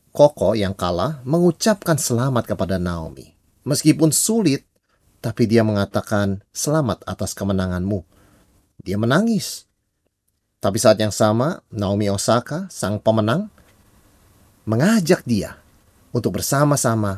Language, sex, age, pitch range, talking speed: Indonesian, male, 30-49, 100-155 Hz, 100 wpm